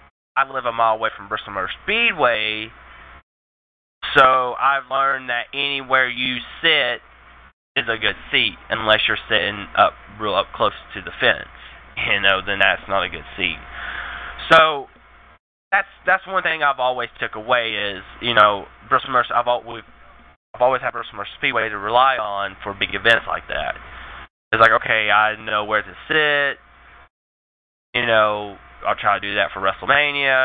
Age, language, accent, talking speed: 20-39, English, American, 160 wpm